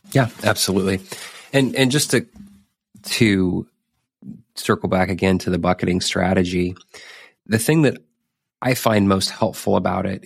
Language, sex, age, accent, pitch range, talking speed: English, male, 30-49, American, 90-100 Hz, 135 wpm